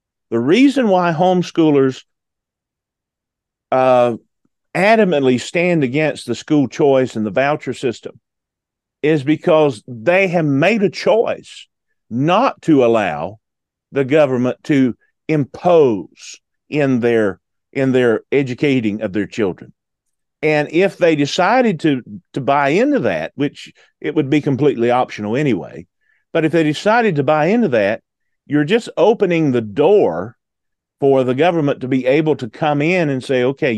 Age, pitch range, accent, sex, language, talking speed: 40-59, 130-180 Hz, American, male, English, 140 wpm